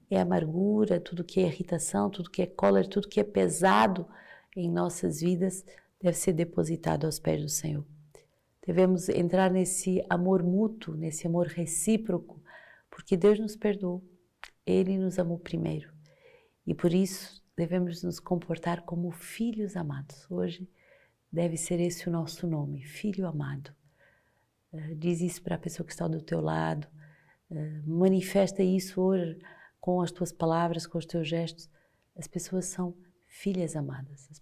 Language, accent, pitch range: Portuguese, Brazilian, 155-185 Hz